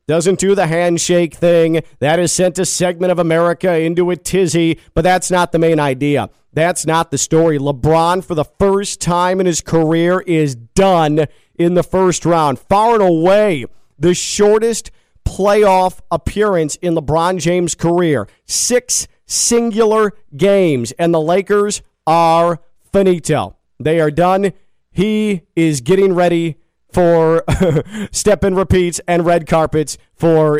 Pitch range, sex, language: 145-185 Hz, male, English